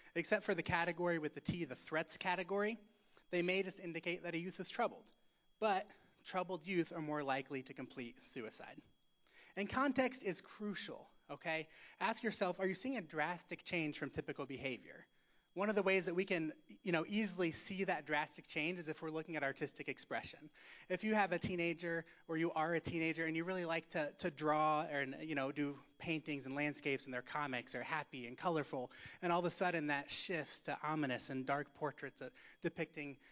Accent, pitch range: American, 145-180 Hz